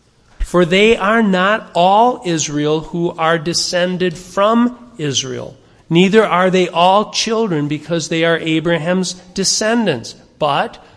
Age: 40-59